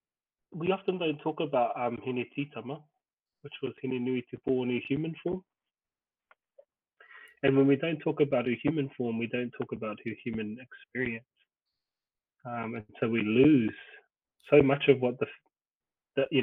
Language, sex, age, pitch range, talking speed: English, male, 20-39, 125-150 Hz, 155 wpm